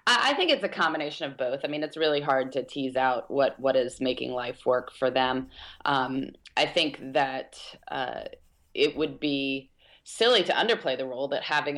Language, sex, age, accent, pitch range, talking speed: English, female, 30-49, American, 130-155 Hz, 195 wpm